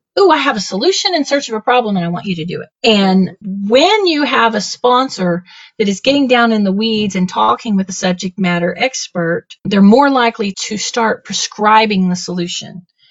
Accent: American